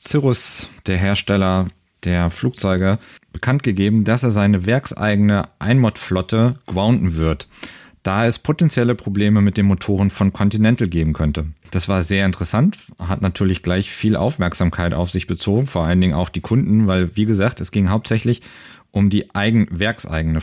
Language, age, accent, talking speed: German, 40-59, German, 155 wpm